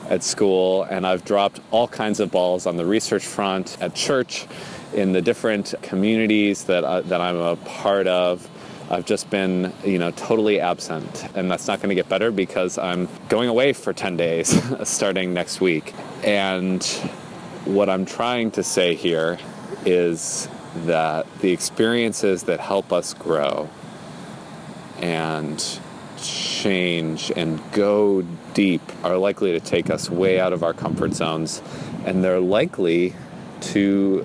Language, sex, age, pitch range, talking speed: English, male, 30-49, 85-100 Hz, 150 wpm